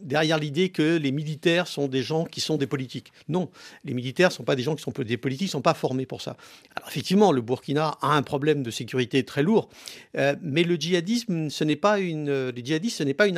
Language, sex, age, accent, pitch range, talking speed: French, male, 50-69, French, 140-185 Hz, 230 wpm